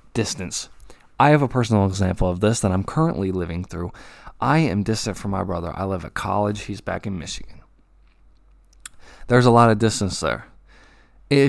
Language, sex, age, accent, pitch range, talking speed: English, male, 20-39, American, 90-115 Hz, 180 wpm